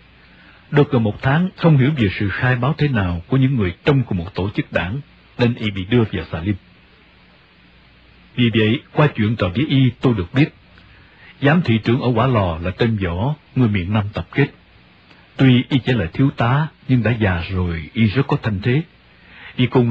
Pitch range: 95-130 Hz